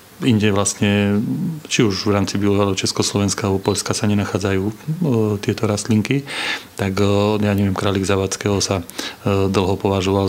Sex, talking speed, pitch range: male, 130 wpm, 100-105 Hz